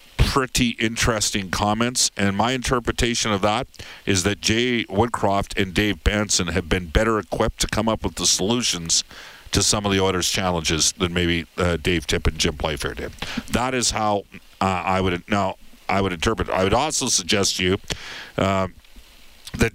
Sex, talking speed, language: male, 180 wpm, English